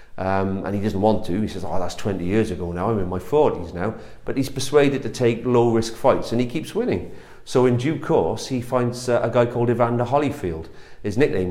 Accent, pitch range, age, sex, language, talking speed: British, 100-120 Hz, 40-59, male, English, 235 wpm